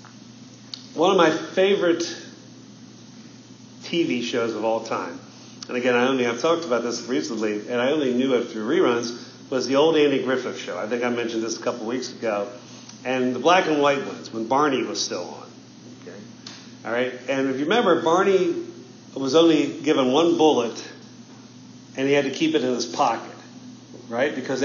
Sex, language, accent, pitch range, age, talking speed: male, English, American, 120-160 Hz, 50-69, 185 wpm